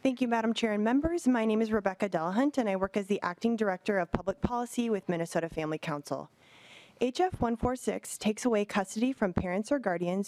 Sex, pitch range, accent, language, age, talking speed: female, 180-230 Hz, American, English, 20-39, 200 wpm